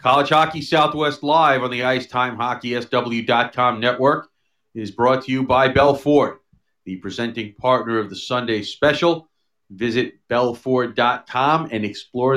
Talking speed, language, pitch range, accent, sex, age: 145 wpm, English, 110-140 Hz, American, male, 40-59